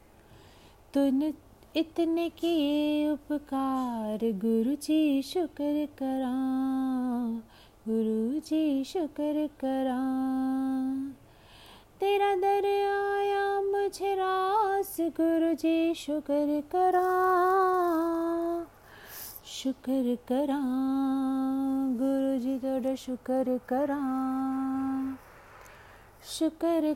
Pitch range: 260-330 Hz